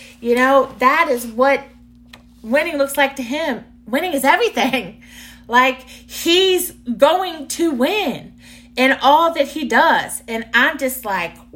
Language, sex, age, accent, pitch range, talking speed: English, female, 30-49, American, 235-295 Hz, 140 wpm